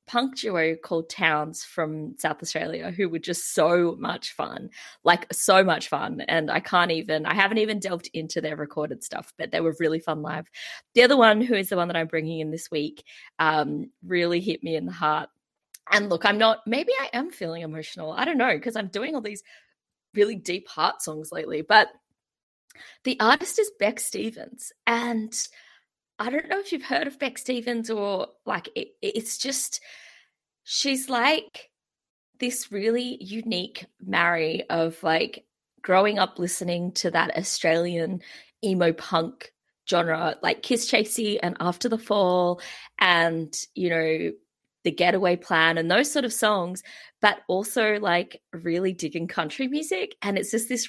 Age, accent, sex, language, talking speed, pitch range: 20-39, Australian, female, English, 170 wpm, 165-230 Hz